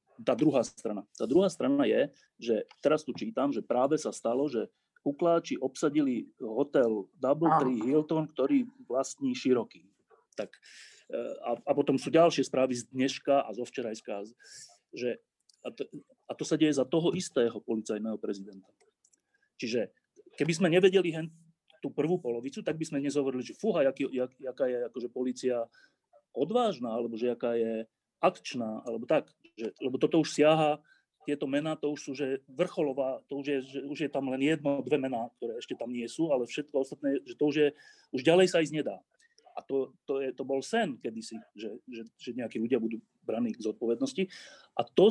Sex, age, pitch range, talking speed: male, 30-49, 130-200 Hz, 175 wpm